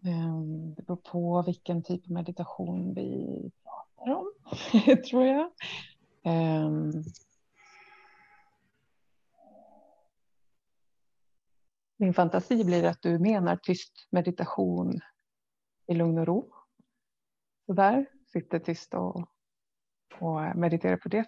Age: 30-49